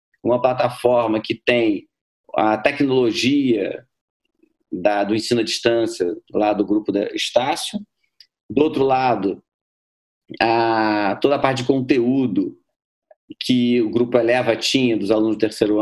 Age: 40-59